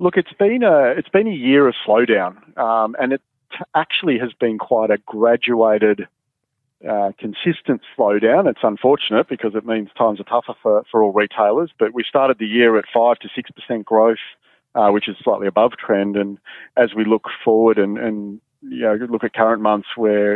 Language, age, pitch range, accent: English, 40-59, 105-120 Hz, Australian